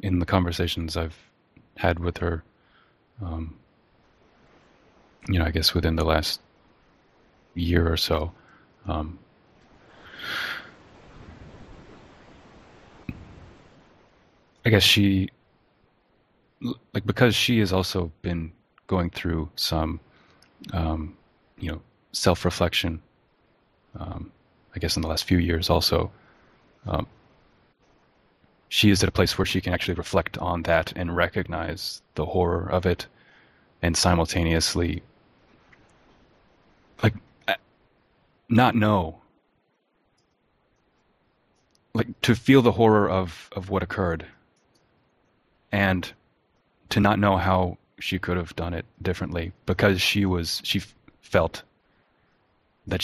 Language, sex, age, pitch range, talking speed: English, male, 20-39, 85-95 Hz, 105 wpm